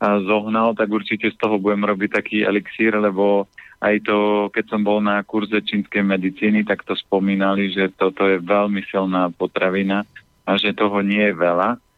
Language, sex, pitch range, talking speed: Slovak, male, 100-110 Hz, 175 wpm